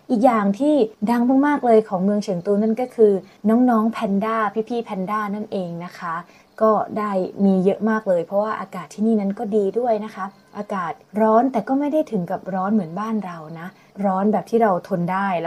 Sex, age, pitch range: female, 20-39, 185-225 Hz